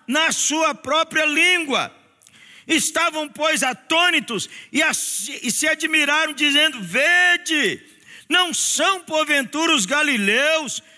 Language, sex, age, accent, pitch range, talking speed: Portuguese, male, 50-69, Brazilian, 255-315 Hz, 105 wpm